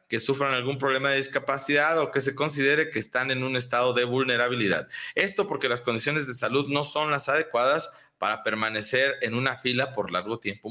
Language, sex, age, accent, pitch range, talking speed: Spanish, male, 40-59, Mexican, 120-160 Hz, 195 wpm